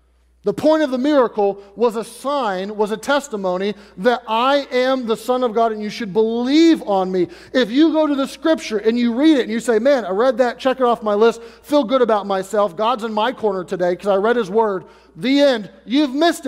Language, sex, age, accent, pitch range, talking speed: English, male, 30-49, American, 200-270 Hz, 235 wpm